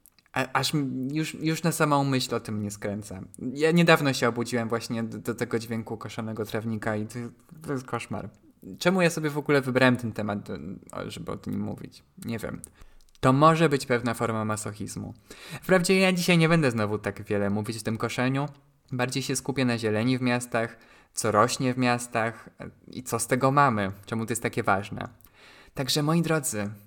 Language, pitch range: Polish, 110-135 Hz